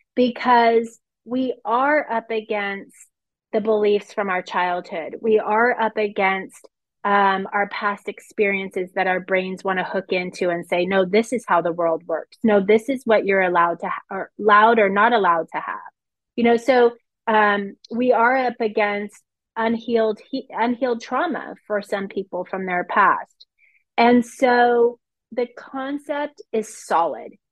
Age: 30-49